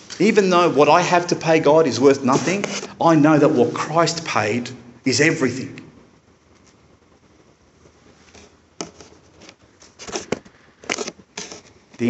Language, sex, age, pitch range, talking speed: English, male, 40-59, 125-175 Hz, 100 wpm